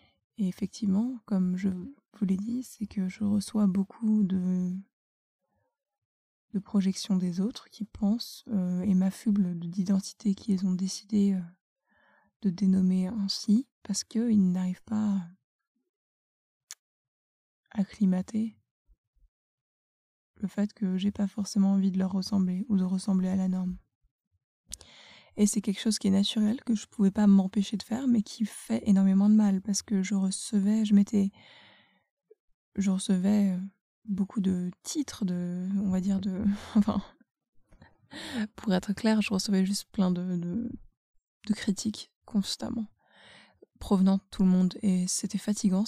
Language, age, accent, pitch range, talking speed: English, 20-39, French, 190-215 Hz, 140 wpm